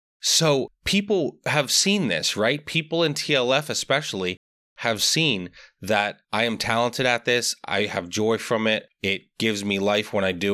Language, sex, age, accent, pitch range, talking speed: English, male, 30-49, American, 105-145 Hz, 170 wpm